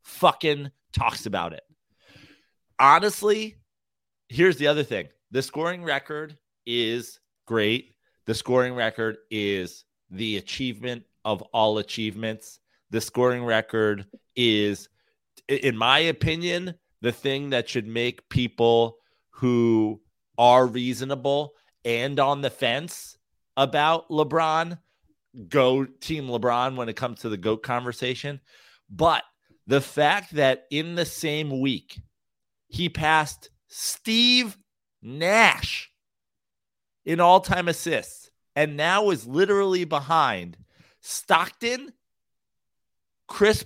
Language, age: English, 30-49